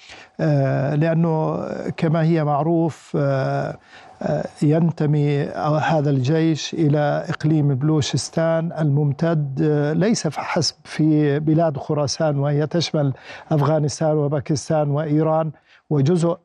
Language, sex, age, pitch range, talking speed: Arabic, male, 50-69, 145-165 Hz, 85 wpm